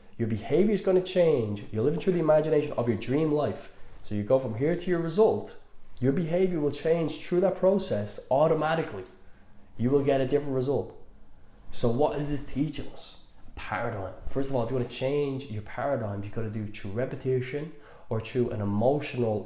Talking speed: 200 wpm